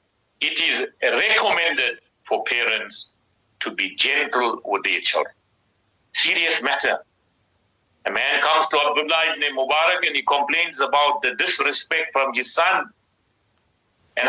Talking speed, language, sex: 125 wpm, English, male